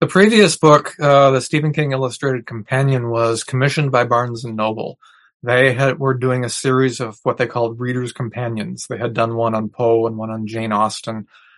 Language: English